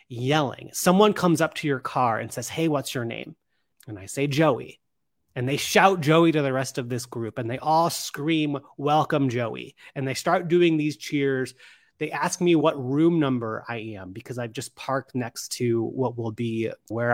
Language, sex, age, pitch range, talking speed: English, male, 30-49, 120-155 Hz, 200 wpm